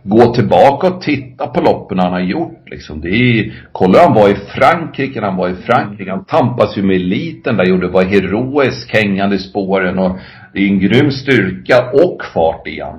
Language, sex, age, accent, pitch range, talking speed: Swedish, male, 50-69, native, 90-115 Hz, 185 wpm